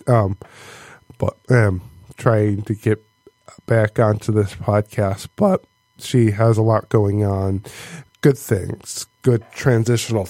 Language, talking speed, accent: English, 130 wpm, American